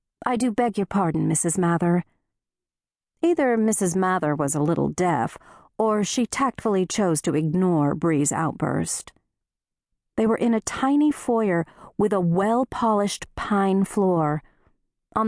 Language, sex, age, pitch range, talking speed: English, female, 40-59, 175-220 Hz, 135 wpm